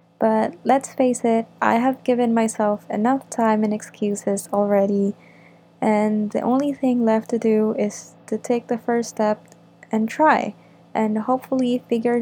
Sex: female